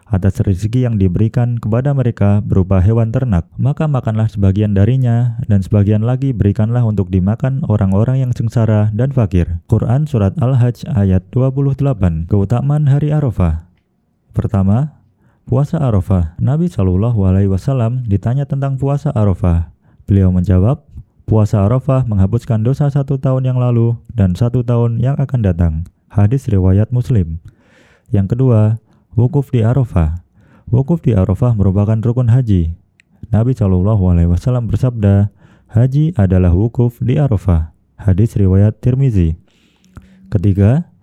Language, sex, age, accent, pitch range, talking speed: Indonesian, male, 20-39, native, 95-125 Hz, 125 wpm